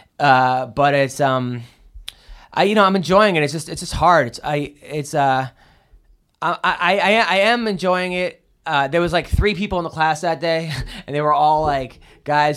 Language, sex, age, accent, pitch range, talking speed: English, male, 20-39, American, 140-190 Hz, 200 wpm